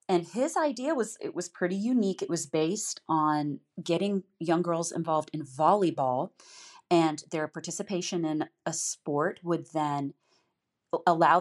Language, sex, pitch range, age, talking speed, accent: English, female, 155-185 Hz, 30-49, 140 wpm, American